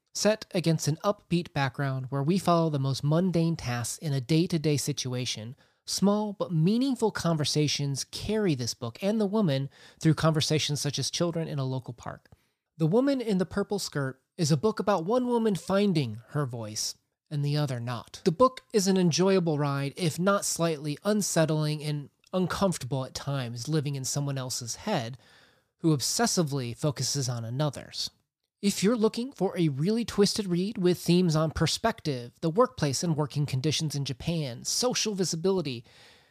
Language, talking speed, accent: English, 165 wpm, American